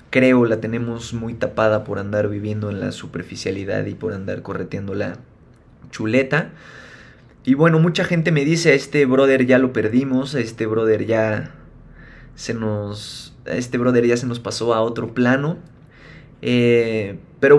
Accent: Mexican